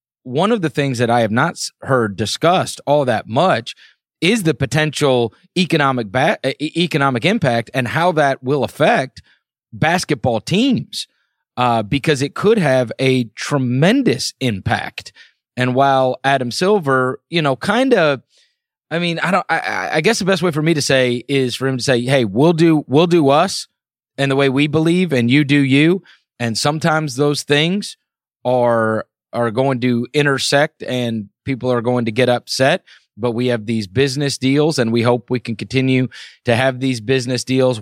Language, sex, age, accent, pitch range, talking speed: English, male, 30-49, American, 120-150 Hz, 175 wpm